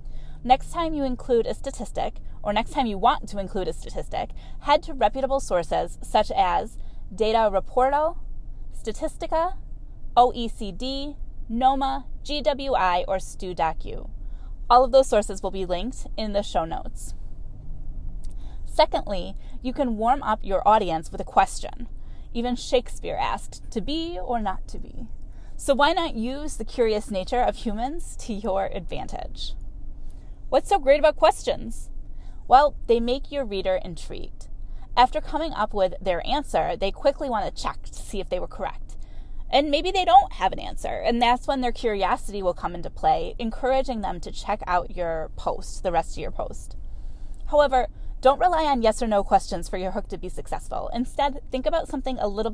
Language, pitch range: English, 200-280 Hz